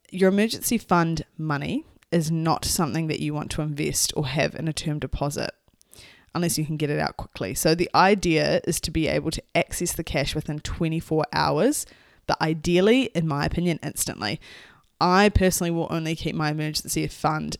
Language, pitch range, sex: English, 155-180 Hz, female